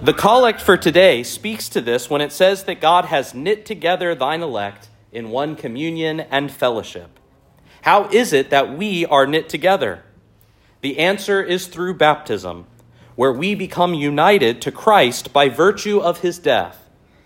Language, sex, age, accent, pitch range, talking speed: English, male, 40-59, American, 110-185 Hz, 160 wpm